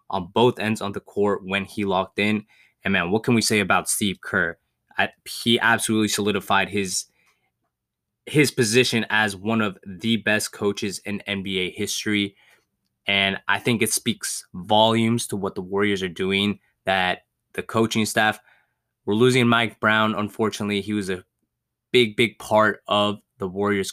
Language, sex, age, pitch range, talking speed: English, male, 20-39, 100-115 Hz, 160 wpm